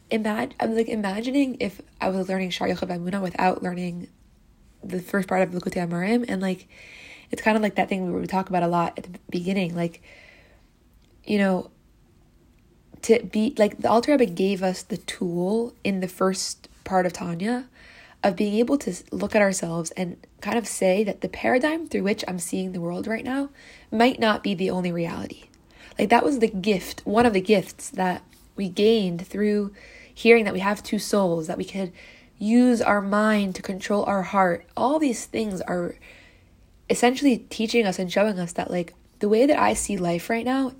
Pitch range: 185-230 Hz